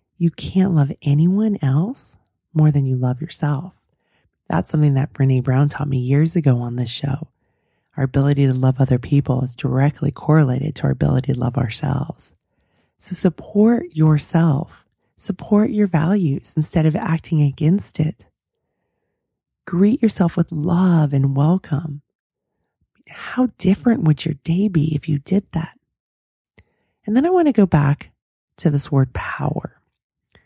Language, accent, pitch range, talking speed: English, American, 140-185 Hz, 150 wpm